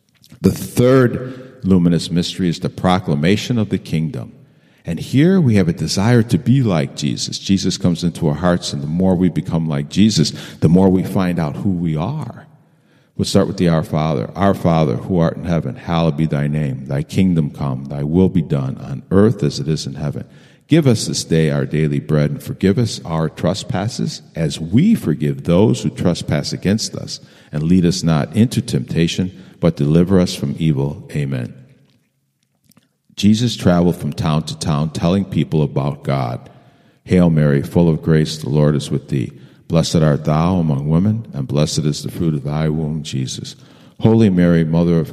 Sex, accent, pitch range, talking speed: male, American, 75-100 Hz, 185 wpm